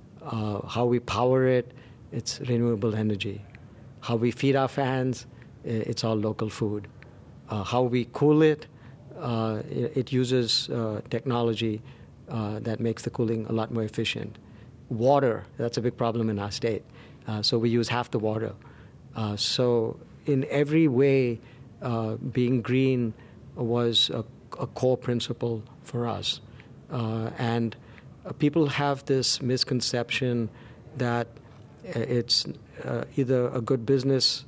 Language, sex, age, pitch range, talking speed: English, male, 50-69, 115-130 Hz, 135 wpm